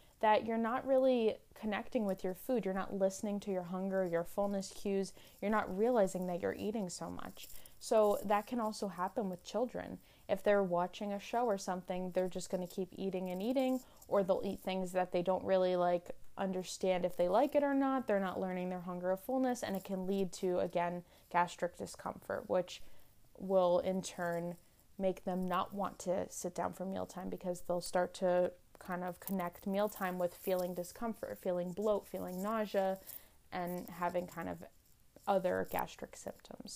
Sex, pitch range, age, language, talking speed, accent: female, 180-210 Hz, 20-39, English, 185 wpm, American